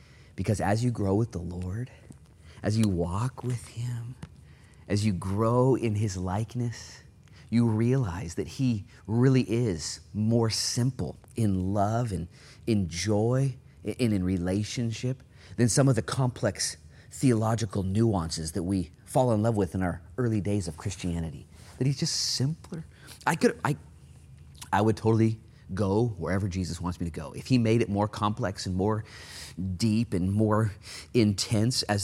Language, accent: Dutch, American